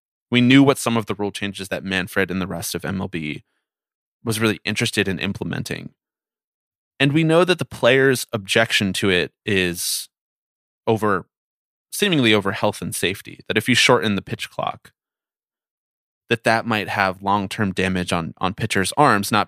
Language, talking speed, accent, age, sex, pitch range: English, 170 wpm, American, 20-39, male, 95-115 Hz